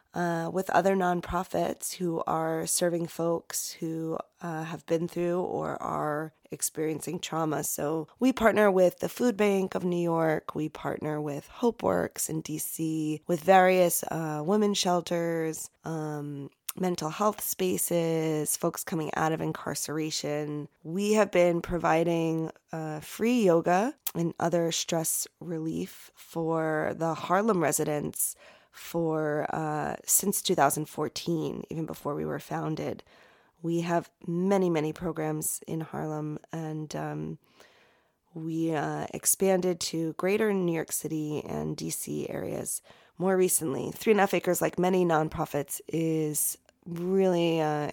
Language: English